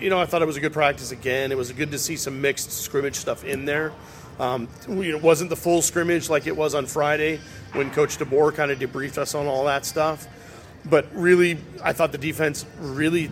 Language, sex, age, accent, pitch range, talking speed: English, male, 40-59, American, 140-165 Hz, 230 wpm